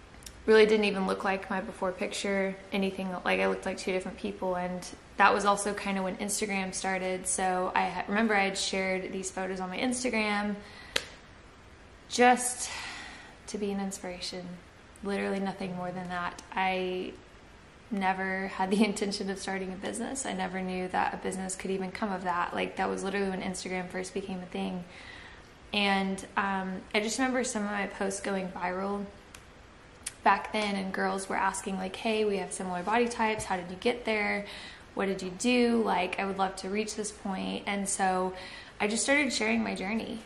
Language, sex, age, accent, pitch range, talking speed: English, female, 20-39, American, 185-205 Hz, 185 wpm